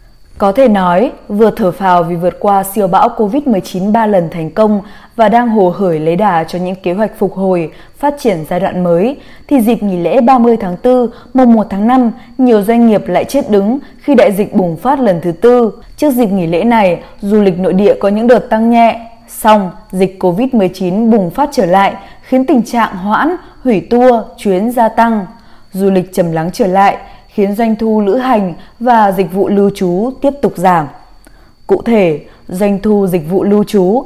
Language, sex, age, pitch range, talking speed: Vietnamese, female, 20-39, 185-235 Hz, 205 wpm